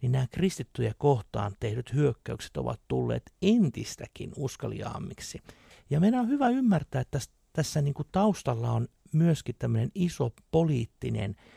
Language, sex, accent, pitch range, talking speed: Finnish, male, native, 115-155 Hz, 130 wpm